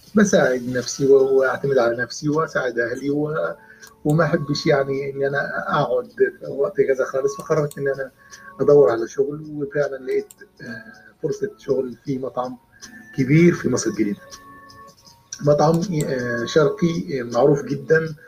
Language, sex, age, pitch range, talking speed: Arabic, male, 30-49, 130-155 Hz, 125 wpm